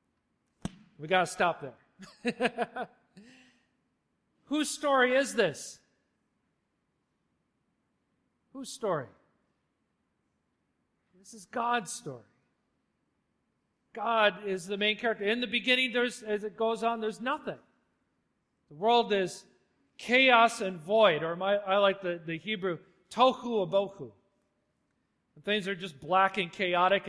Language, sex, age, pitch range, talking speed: English, male, 40-59, 185-235 Hz, 115 wpm